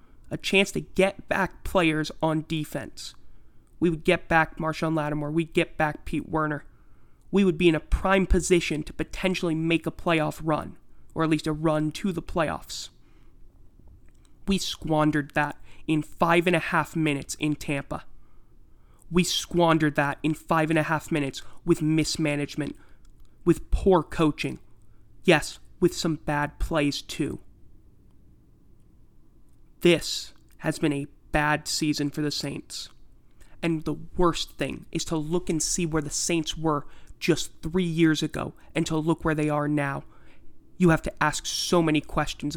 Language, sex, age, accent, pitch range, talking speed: English, male, 20-39, American, 150-170 Hz, 155 wpm